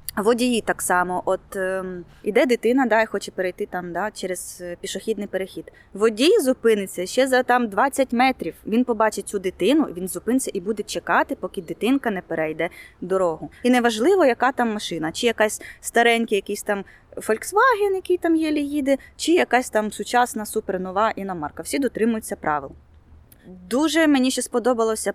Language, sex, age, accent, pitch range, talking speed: Ukrainian, female, 20-39, native, 185-250 Hz, 165 wpm